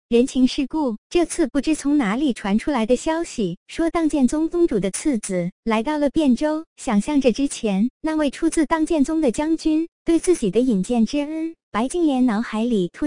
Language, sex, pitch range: Chinese, male, 220-310 Hz